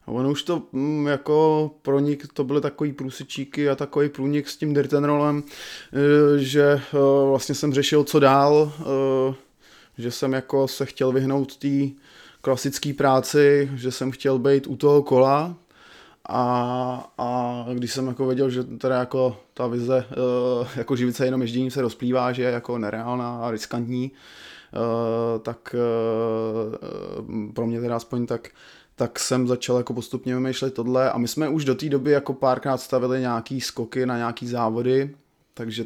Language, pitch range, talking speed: Czech, 120-140 Hz, 160 wpm